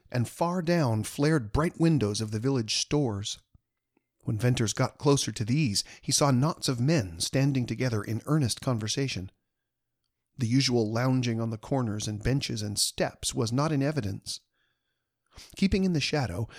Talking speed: 160 wpm